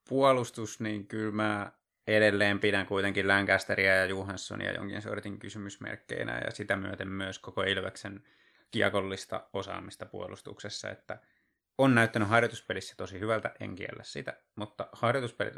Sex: male